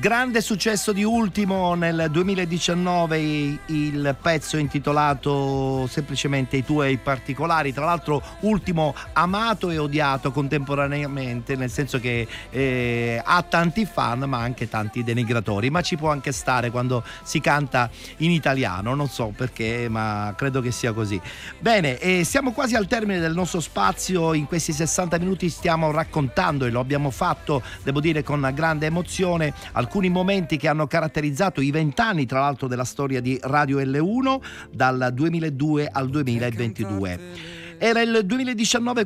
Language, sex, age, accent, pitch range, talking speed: Italian, male, 40-59, native, 125-165 Hz, 145 wpm